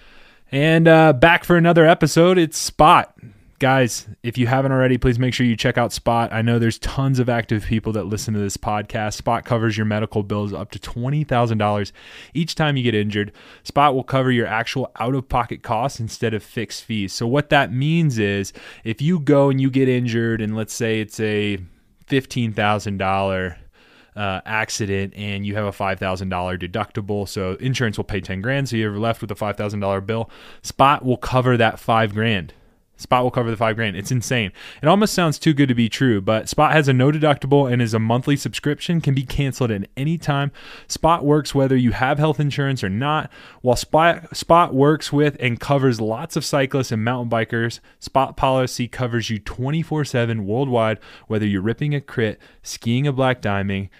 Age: 20-39